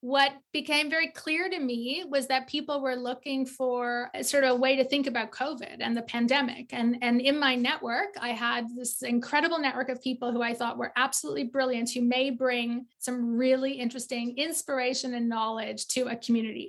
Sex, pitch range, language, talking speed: female, 245-285 Hz, English, 190 wpm